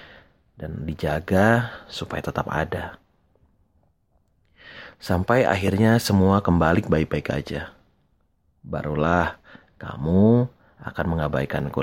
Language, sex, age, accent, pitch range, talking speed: Indonesian, male, 30-49, native, 80-100 Hz, 75 wpm